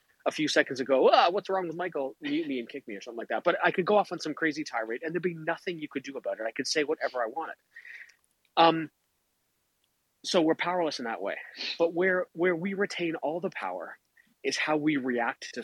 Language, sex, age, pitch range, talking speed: English, male, 30-49, 125-175 Hz, 240 wpm